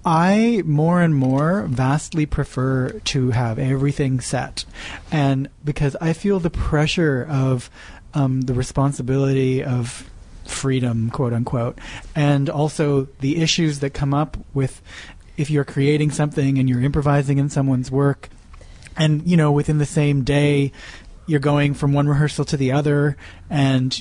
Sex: male